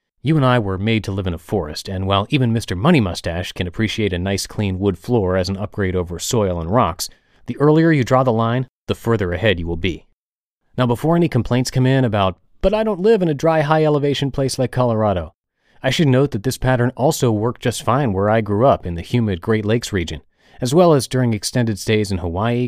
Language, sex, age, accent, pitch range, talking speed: English, male, 30-49, American, 100-130 Hz, 235 wpm